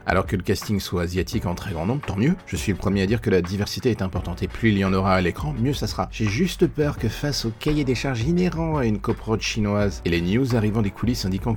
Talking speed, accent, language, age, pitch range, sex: 285 wpm, French, French, 40-59, 95-135 Hz, male